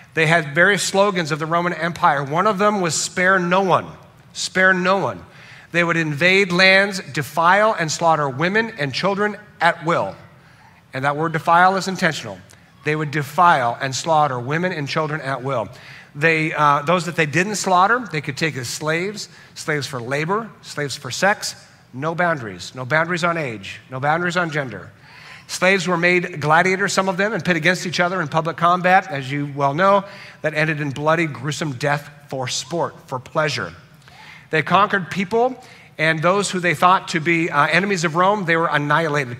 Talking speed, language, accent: 185 wpm, English, American